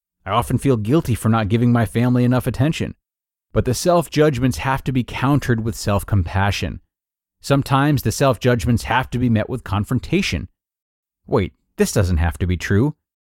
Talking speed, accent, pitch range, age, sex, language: 165 wpm, American, 100-140 Hz, 30-49, male, English